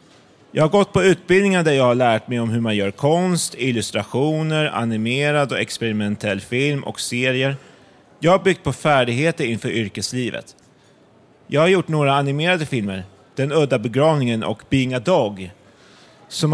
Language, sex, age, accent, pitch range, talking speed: Swedish, male, 30-49, native, 115-150 Hz, 155 wpm